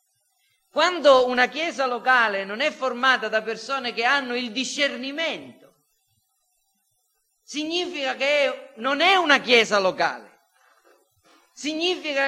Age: 40-59